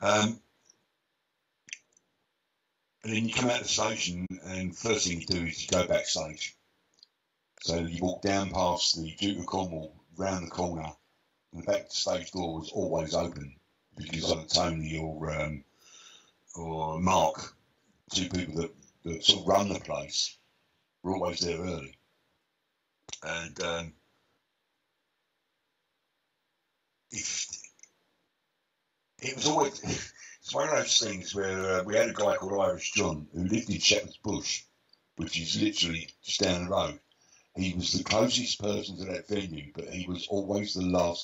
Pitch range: 85-100 Hz